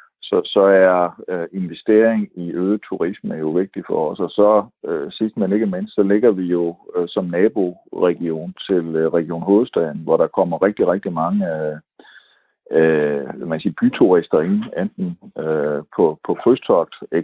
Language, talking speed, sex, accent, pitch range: Danish, 165 wpm, male, native, 90-110 Hz